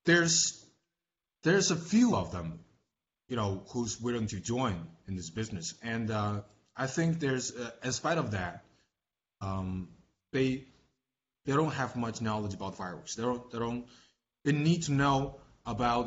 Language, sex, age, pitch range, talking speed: English, male, 20-39, 110-145 Hz, 160 wpm